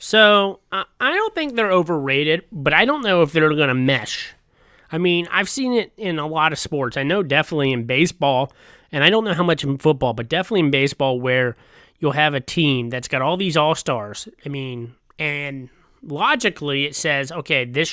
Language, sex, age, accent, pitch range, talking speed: English, male, 30-49, American, 140-180 Hz, 200 wpm